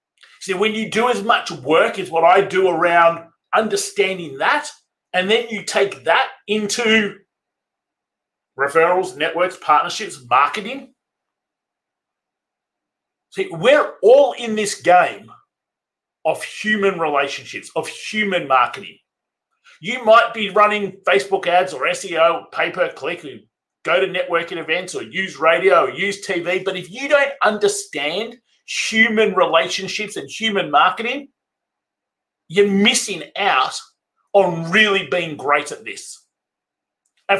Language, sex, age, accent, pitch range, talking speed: English, male, 40-59, Australian, 180-235 Hz, 120 wpm